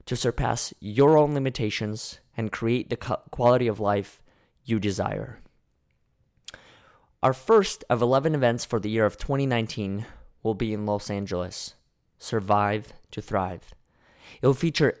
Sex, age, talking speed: male, 20-39, 135 wpm